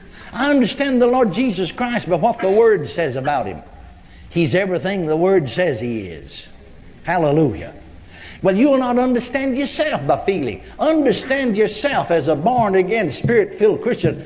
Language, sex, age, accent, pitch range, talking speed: English, male, 60-79, American, 165-210 Hz, 150 wpm